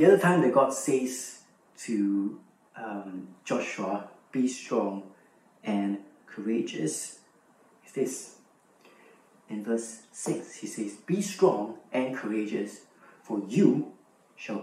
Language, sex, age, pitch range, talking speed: English, male, 40-59, 100-135 Hz, 110 wpm